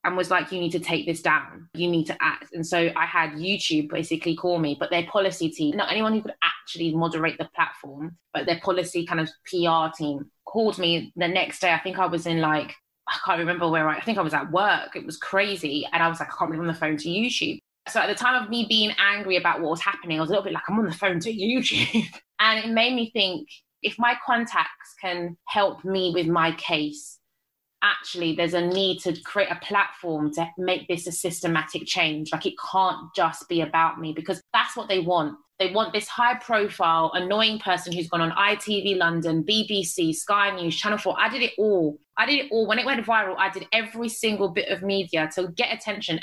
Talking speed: 230 wpm